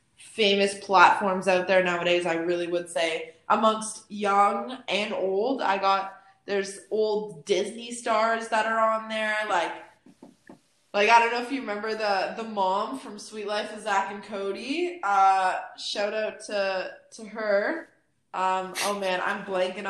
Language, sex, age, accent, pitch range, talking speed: English, female, 20-39, American, 190-225 Hz, 155 wpm